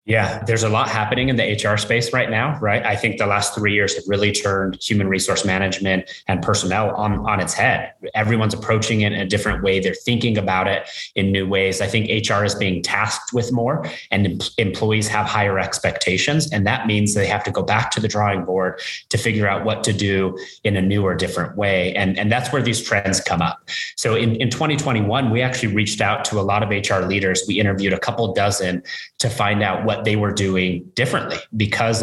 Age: 30-49